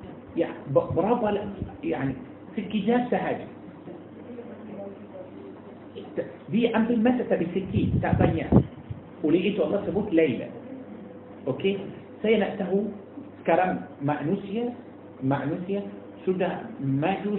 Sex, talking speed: male, 85 wpm